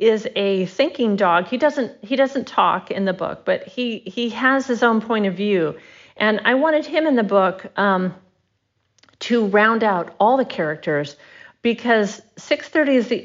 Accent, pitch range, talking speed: American, 190-235 Hz, 175 wpm